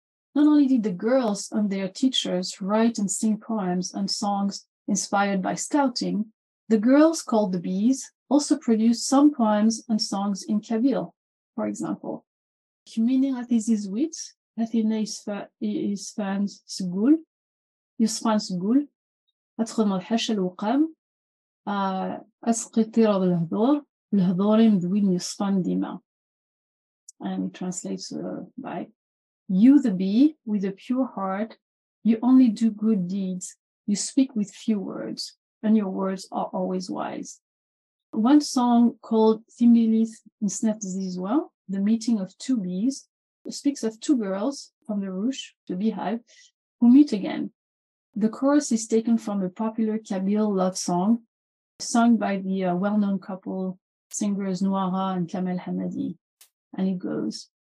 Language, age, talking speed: English, 30-49, 110 wpm